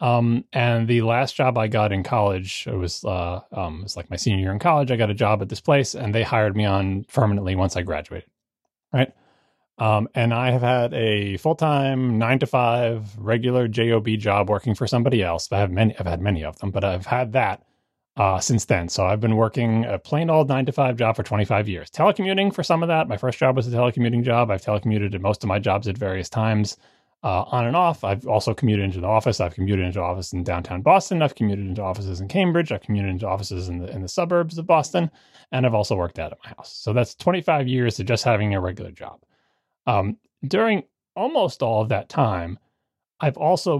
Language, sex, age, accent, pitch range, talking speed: English, male, 30-49, American, 100-130 Hz, 230 wpm